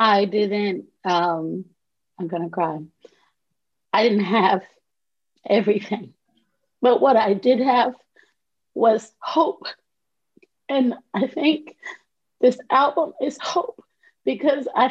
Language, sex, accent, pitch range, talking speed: English, female, American, 215-275 Hz, 105 wpm